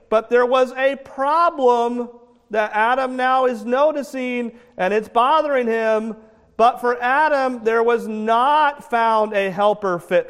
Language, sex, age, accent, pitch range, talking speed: English, male, 40-59, American, 165-235 Hz, 140 wpm